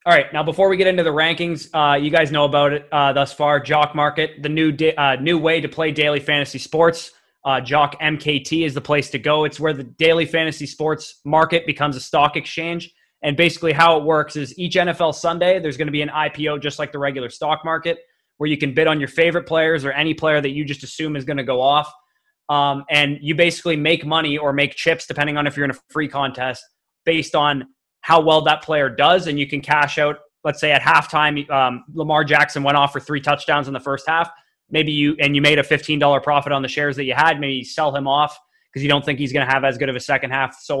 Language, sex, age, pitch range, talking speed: English, male, 20-39, 140-160 Hz, 250 wpm